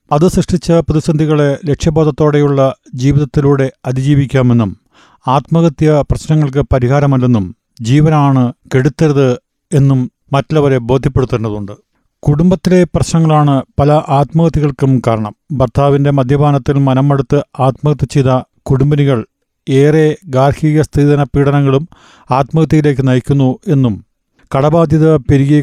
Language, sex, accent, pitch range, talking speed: Malayalam, male, native, 135-155 Hz, 75 wpm